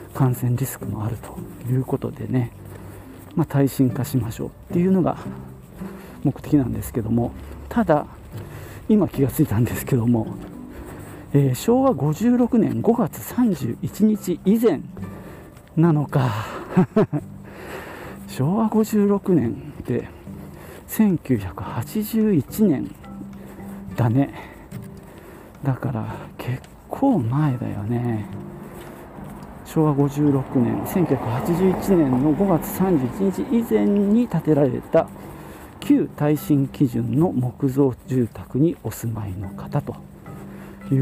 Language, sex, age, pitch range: Japanese, male, 40-59, 115-165 Hz